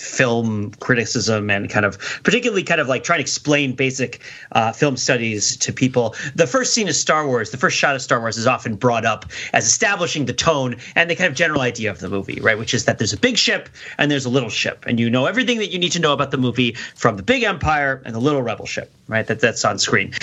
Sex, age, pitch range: male, 30-49, 125-175 Hz